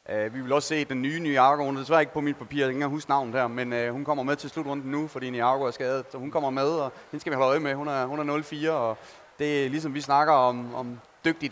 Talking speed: 300 wpm